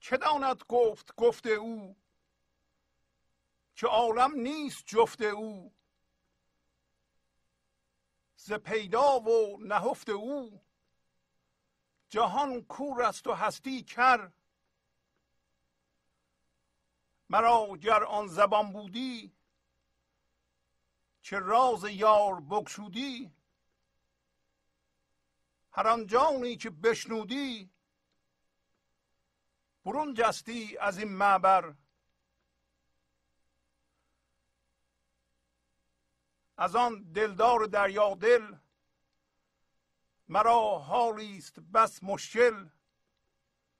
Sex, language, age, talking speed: male, Persian, 50-69, 65 wpm